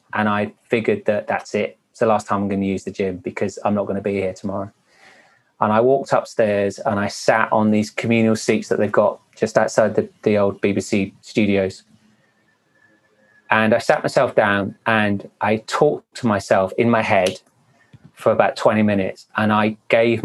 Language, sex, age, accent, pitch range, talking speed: English, male, 30-49, British, 100-125 Hz, 195 wpm